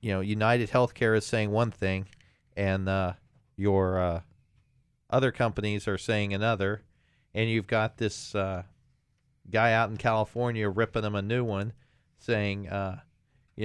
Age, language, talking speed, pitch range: 40-59, English, 150 wpm, 110-135 Hz